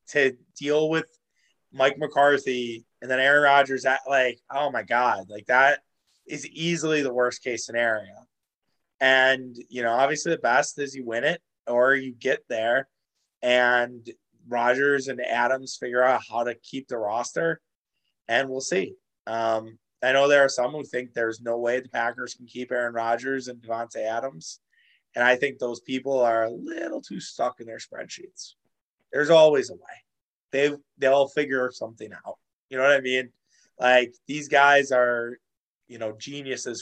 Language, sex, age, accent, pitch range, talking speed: English, male, 20-39, American, 120-140 Hz, 170 wpm